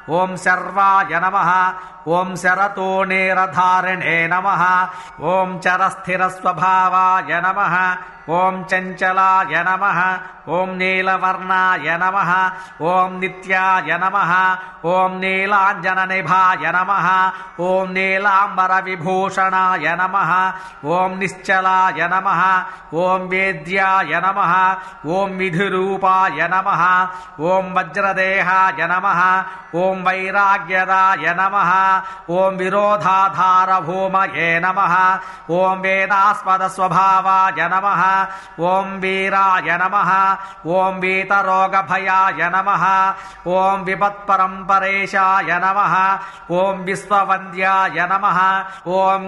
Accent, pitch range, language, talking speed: Indian, 185-190 Hz, English, 90 wpm